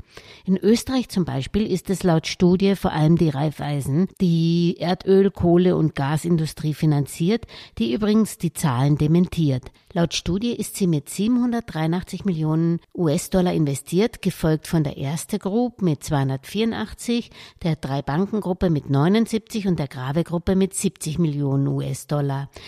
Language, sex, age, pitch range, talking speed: English, female, 60-79, 150-195 Hz, 135 wpm